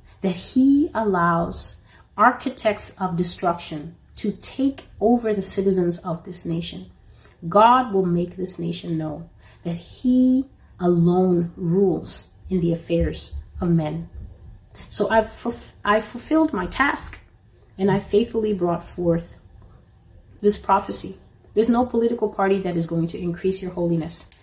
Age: 30-49